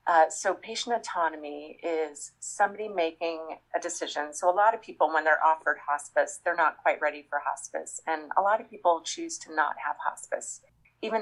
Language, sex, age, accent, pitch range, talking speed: English, female, 30-49, American, 155-190 Hz, 185 wpm